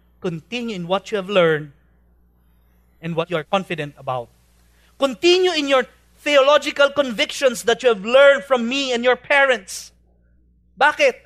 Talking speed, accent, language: 145 wpm, Filipino, English